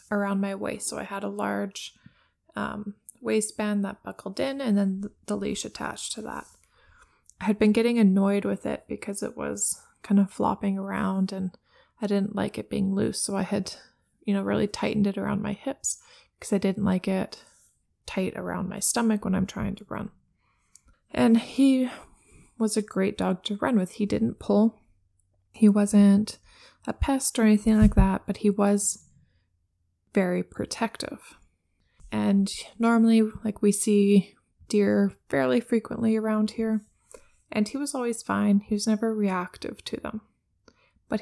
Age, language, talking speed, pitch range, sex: 20-39, English, 165 wpm, 195-220 Hz, female